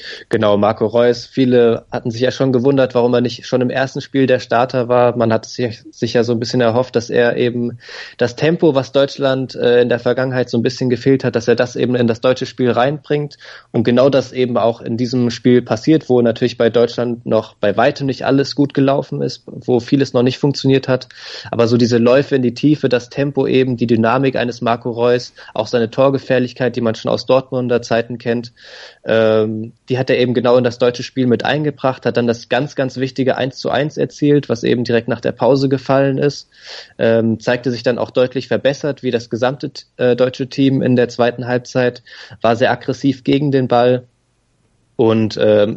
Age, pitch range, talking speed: 20-39, 120-130 Hz, 205 wpm